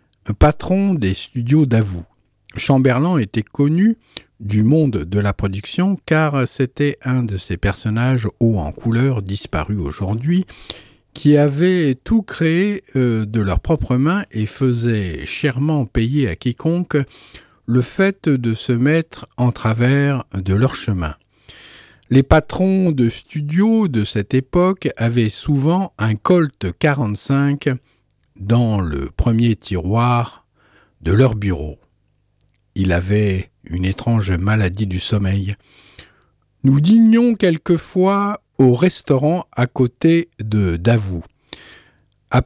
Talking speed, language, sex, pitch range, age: 115 wpm, French, male, 105-155 Hz, 50-69